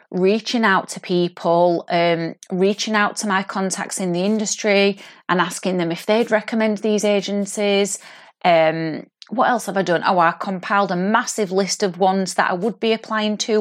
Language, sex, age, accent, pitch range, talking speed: English, female, 30-49, British, 175-215 Hz, 180 wpm